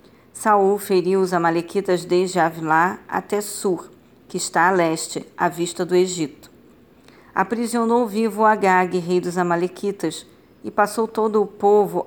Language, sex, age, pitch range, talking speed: Portuguese, female, 40-59, 175-200 Hz, 135 wpm